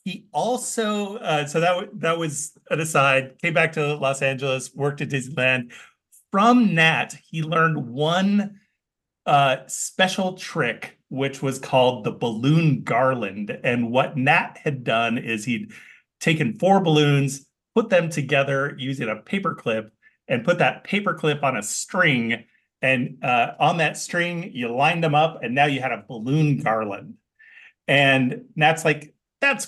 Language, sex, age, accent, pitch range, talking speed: English, male, 30-49, American, 130-165 Hz, 155 wpm